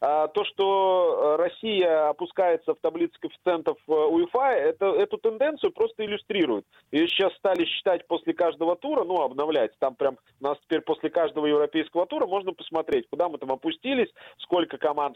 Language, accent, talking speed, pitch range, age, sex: Russian, native, 150 wpm, 155-250 Hz, 30-49, male